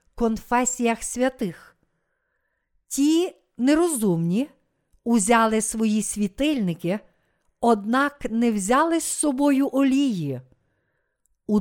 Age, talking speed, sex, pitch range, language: 50-69, 70 wpm, female, 185-260 Hz, Ukrainian